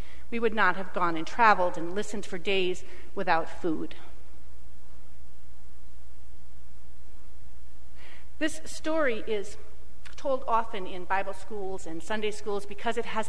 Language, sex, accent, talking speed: English, female, American, 120 wpm